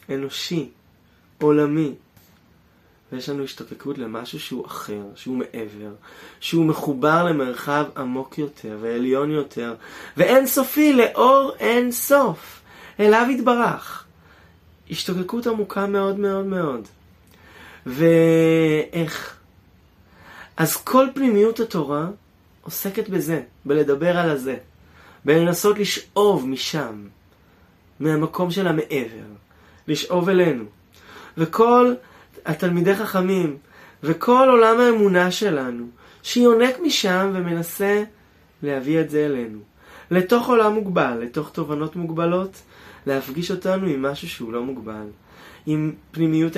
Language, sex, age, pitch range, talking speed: Hebrew, male, 20-39, 115-190 Hz, 100 wpm